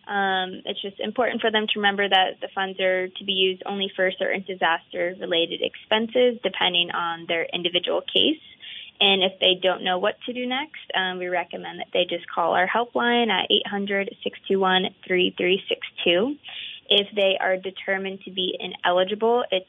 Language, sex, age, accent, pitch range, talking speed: English, female, 20-39, American, 180-210 Hz, 160 wpm